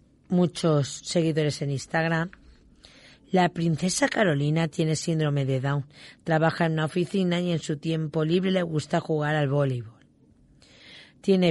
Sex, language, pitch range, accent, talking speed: female, Spanish, 145-175 Hz, Spanish, 135 wpm